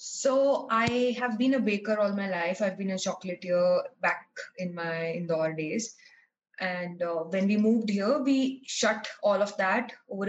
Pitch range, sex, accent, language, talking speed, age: 185-245 Hz, female, Indian, English, 185 wpm, 20-39